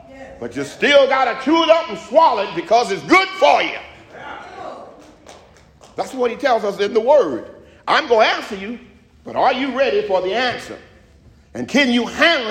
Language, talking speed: English, 190 wpm